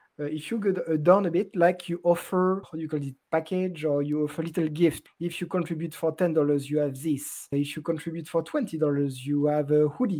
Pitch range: 150-175 Hz